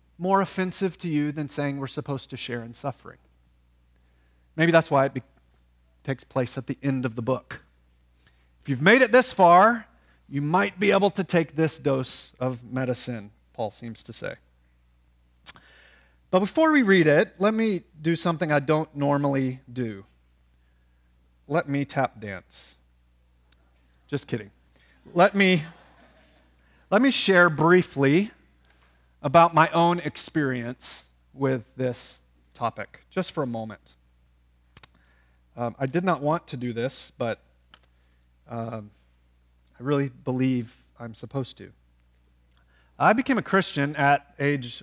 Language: English